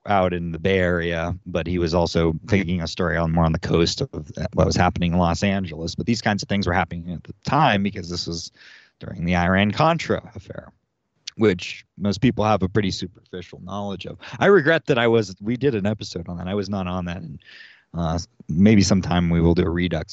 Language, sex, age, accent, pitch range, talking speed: English, male, 30-49, American, 90-110 Hz, 225 wpm